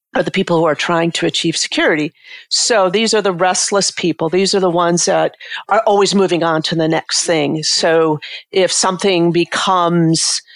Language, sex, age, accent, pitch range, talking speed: English, female, 50-69, American, 160-185 Hz, 180 wpm